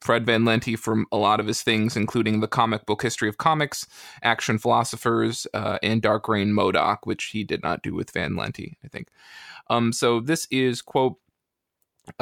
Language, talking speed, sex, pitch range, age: English, 190 wpm, male, 115-135 Hz, 20-39